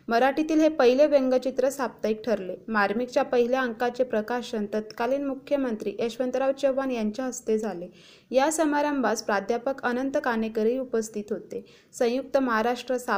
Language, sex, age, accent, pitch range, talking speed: Marathi, female, 20-39, native, 220-270 Hz, 120 wpm